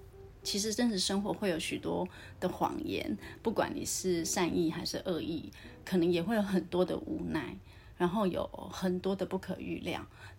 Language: Chinese